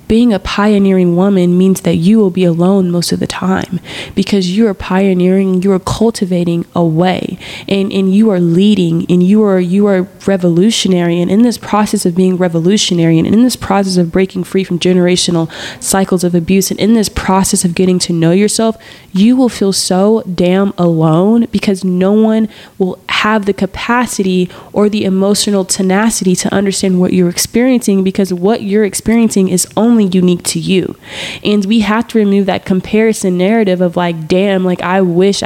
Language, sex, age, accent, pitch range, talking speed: English, female, 20-39, American, 180-210 Hz, 180 wpm